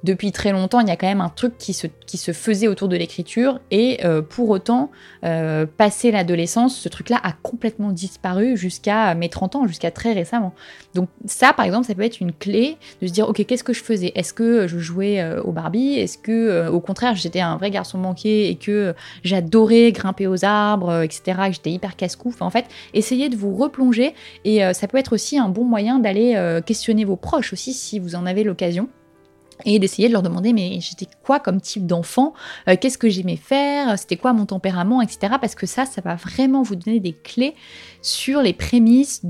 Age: 20-39